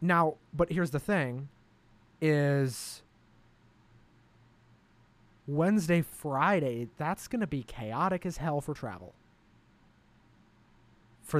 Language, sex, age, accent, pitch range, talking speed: English, male, 20-39, American, 115-145 Hz, 95 wpm